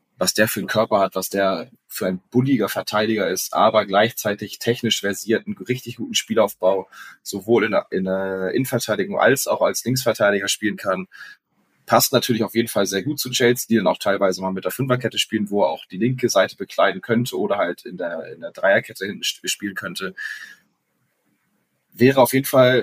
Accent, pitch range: German, 100-125 Hz